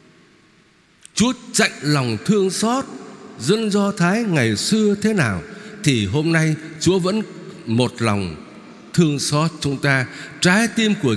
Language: Vietnamese